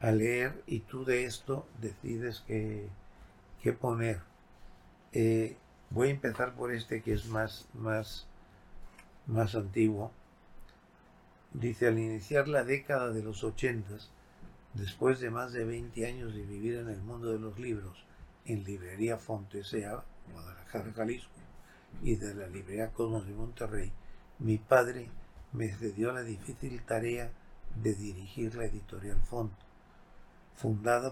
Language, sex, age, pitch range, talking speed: Spanish, male, 60-79, 105-120 Hz, 135 wpm